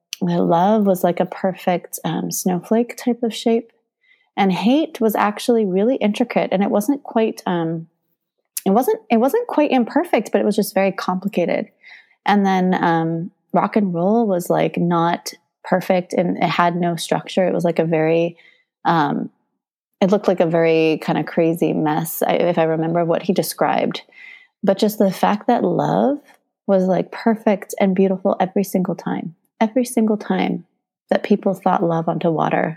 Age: 30-49